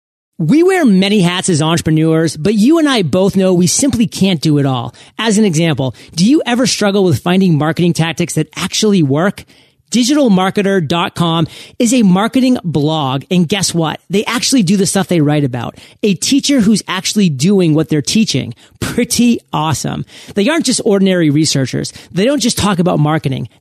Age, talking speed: 40-59, 175 wpm